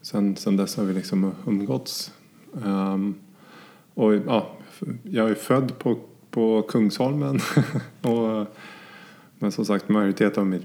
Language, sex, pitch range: Swedish, male, 95-110 Hz